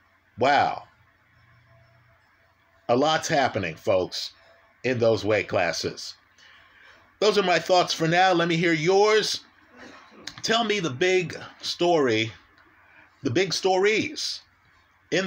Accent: American